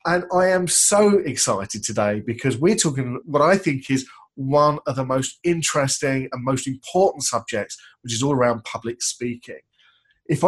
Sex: male